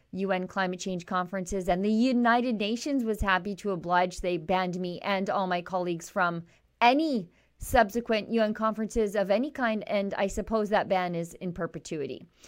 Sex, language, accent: female, English, American